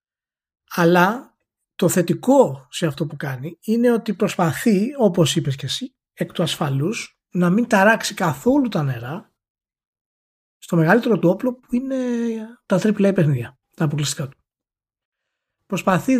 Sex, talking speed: male, 135 wpm